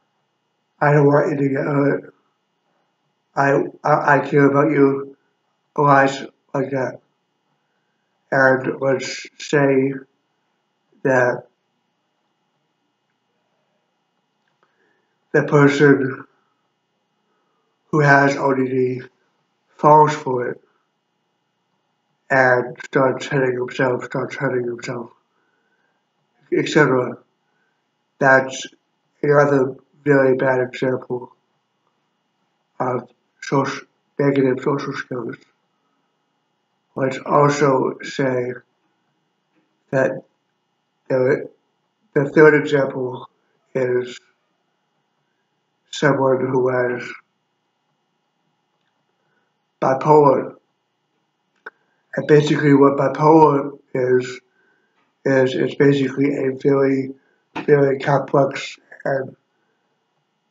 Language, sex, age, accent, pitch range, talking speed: English, male, 60-79, American, 130-145 Hz, 75 wpm